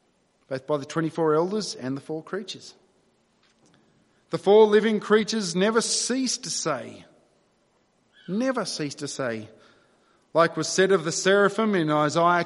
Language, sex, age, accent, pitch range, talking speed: English, male, 40-59, Australian, 165-225 Hz, 140 wpm